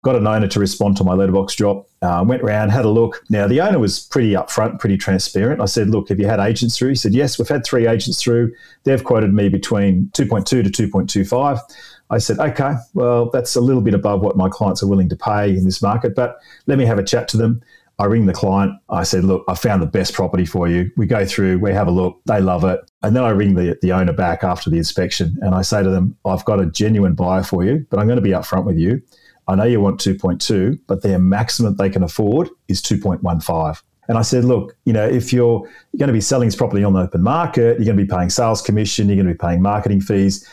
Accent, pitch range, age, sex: Australian, 95-115 Hz, 40-59, male